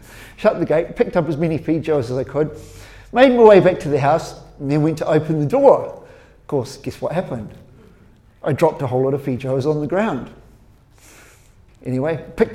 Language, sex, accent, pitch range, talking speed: English, male, British, 135-195 Hz, 200 wpm